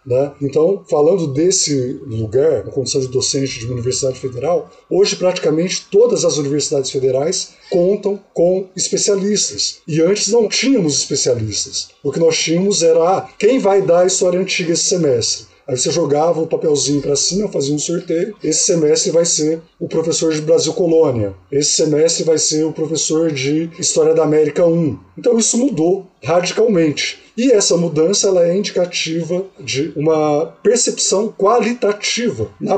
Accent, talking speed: Brazilian, 155 wpm